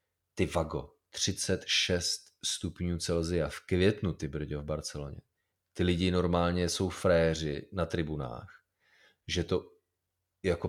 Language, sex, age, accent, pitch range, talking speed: Czech, male, 30-49, native, 90-110 Hz, 110 wpm